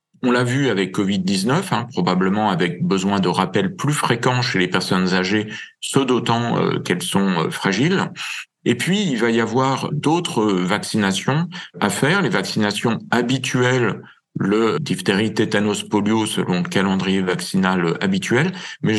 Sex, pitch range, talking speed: male, 100-135 Hz, 150 wpm